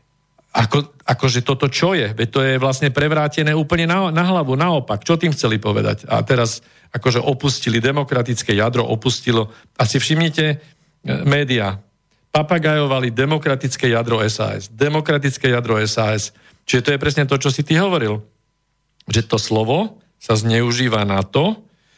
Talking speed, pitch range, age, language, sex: 140 wpm, 115-155 Hz, 50-69, Slovak, male